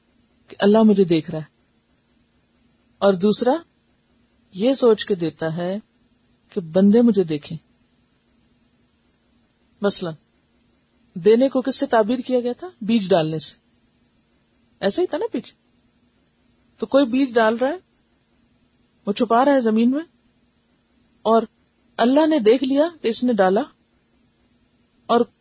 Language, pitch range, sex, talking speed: Urdu, 175-235 Hz, female, 130 wpm